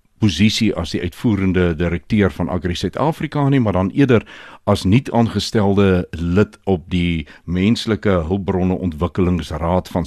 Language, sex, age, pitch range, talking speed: Swedish, male, 60-79, 90-115 Hz, 130 wpm